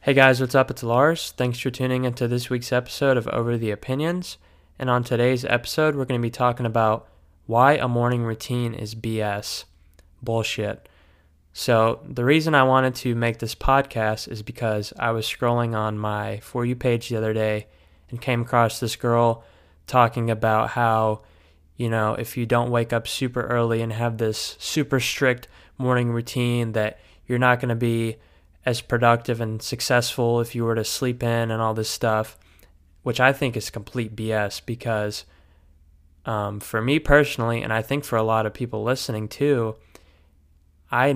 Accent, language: American, English